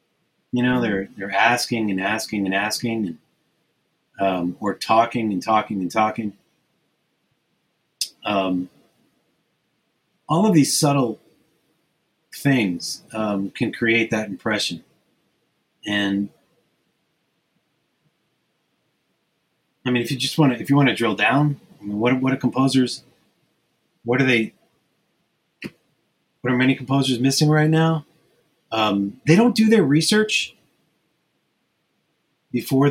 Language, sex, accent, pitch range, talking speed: English, male, American, 100-135 Hz, 115 wpm